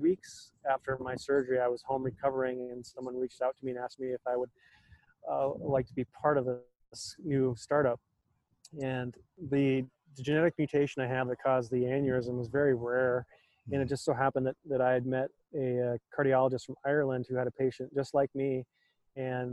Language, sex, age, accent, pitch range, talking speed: English, male, 30-49, American, 125-135 Hz, 200 wpm